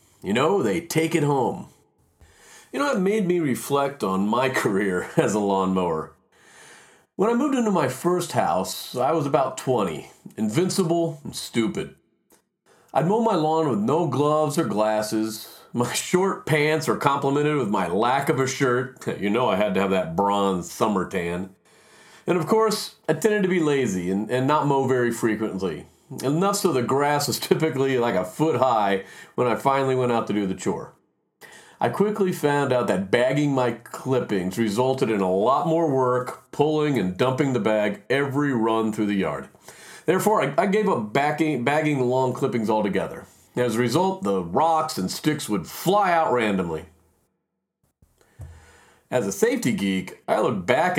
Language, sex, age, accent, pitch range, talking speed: English, male, 40-59, American, 110-165 Hz, 175 wpm